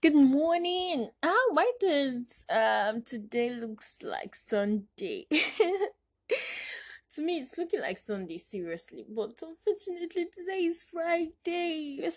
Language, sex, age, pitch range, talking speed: English, female, 10-29, 200-325 Hz, 115 wpm